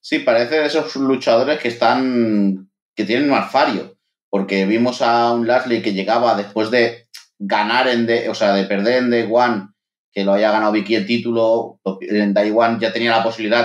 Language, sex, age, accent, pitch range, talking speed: Spanish, male, 30-49, Spanish, 110-125 Hz, 195 wpm